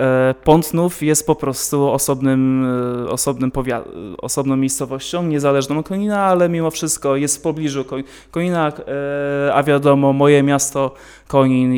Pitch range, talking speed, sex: 135-155 Hz, 105 wpm, male